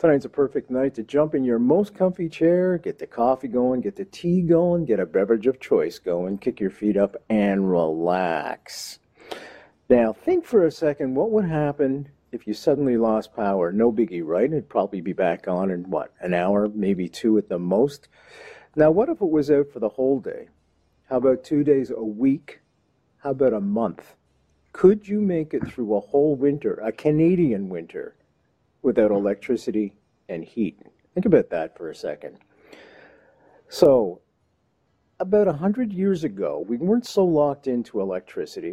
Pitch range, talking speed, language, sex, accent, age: 105-175 Hz, 180 wpm, English, male, American, 50-69